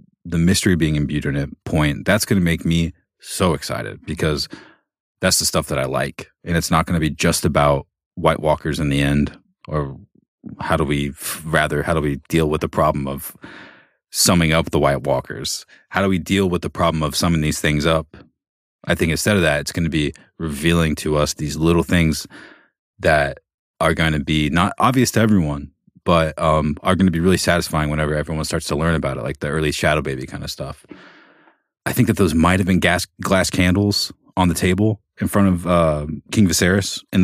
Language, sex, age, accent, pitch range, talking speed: English, male, 30-49, American, 75-90 Hz, 210 wpm